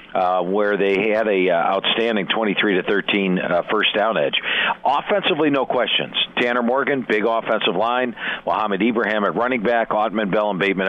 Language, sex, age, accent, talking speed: English, male, 50-69, American, 160 wpm